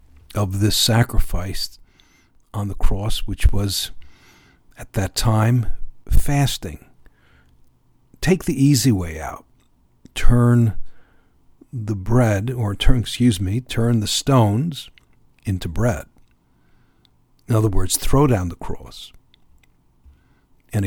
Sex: male